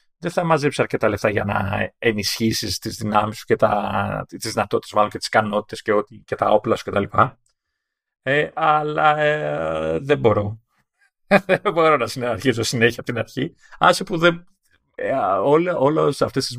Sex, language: male, Greek